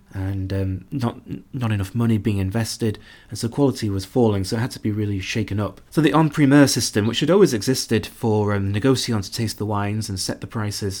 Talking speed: 225 wpm